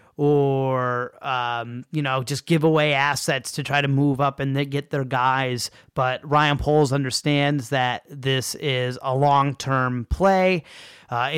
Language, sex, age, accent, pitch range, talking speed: English, male, 30-49, American, 130-150 Hz, 150 wpm